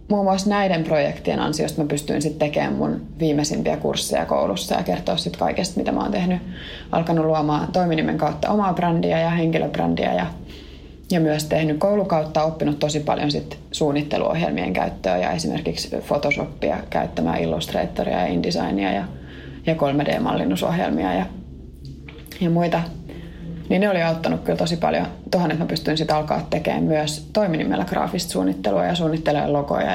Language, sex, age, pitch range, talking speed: Finnish, female, 20-39, 145-175 Hz, 145 wpm